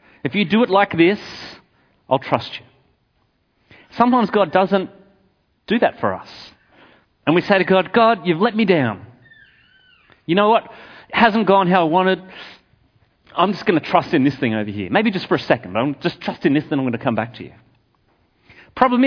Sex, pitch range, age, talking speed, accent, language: male, 125-195 Hz, 30-49, 200 wpm, Australian, English